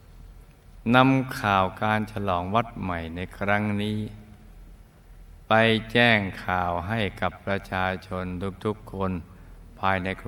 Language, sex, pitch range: Thai, male, 90-115 Hz